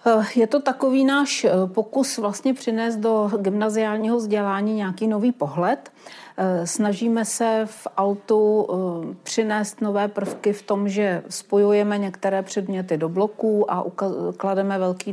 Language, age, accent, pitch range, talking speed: Czech, 40-59, native, 180-205 Hz, 120 wpm